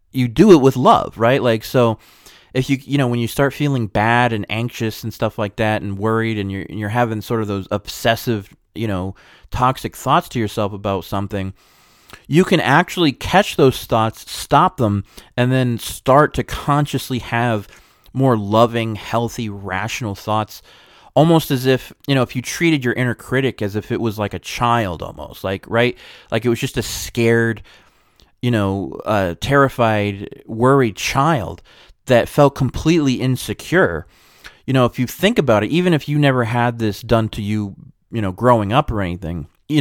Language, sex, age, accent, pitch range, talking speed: English, male, 30-49, American, 105-130 Hz, 180 wpm